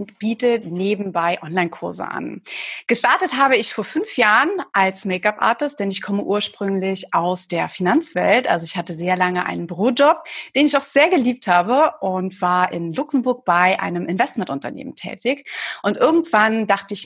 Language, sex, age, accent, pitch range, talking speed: German, female, 30-49, German, 180-235 Hz, 160 wpm